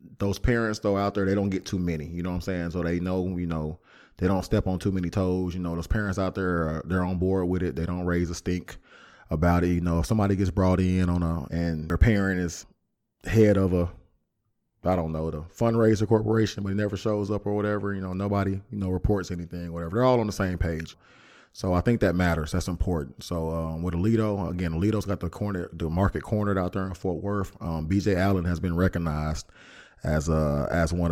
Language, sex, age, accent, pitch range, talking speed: English, male, 20-39, American, 85-100 Hz, 235 wpm